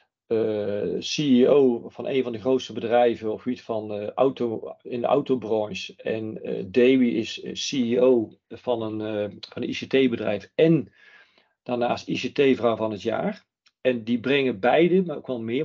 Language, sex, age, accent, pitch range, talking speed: Dutch, male, 50-69, Dutch, 115-145 Hz, 150 wpm